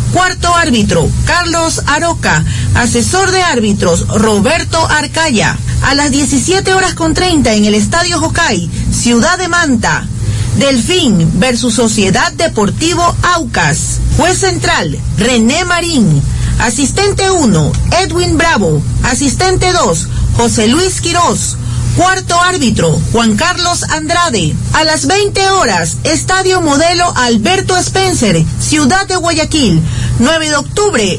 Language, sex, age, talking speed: Spanish, female, 40-59, 115 wpm